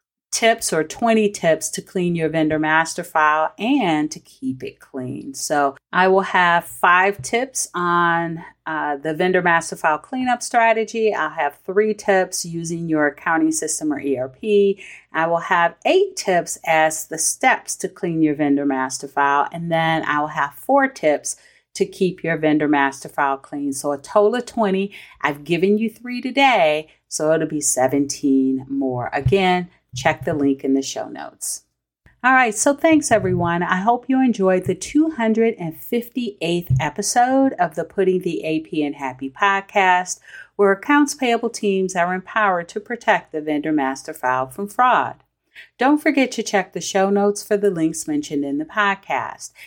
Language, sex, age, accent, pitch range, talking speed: English, female, 40-59, American, 150-210 Hz, 165 wpm